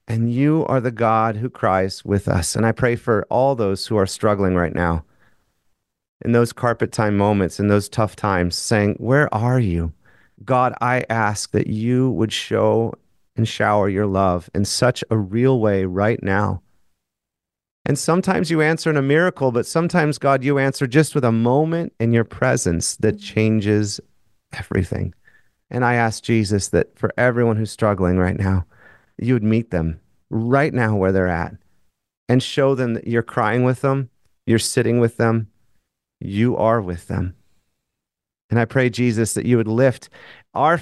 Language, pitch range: English, 100-125 Hz